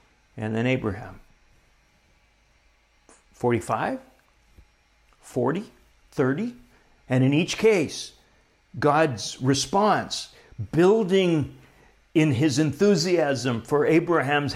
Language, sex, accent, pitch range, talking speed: English, male, American, 115-150 Hz, 75 wpm